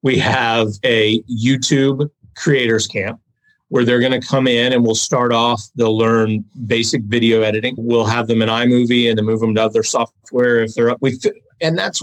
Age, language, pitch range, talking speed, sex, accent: 30-49, English, 115-130 Hz, 190 wpm, male, American